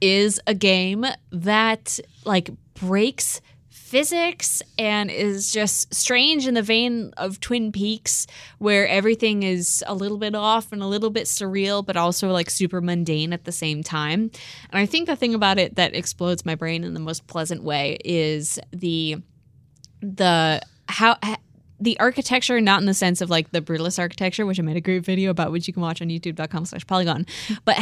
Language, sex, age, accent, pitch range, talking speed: English, female, 20-39, American, 170-215 Hz, 185 wpm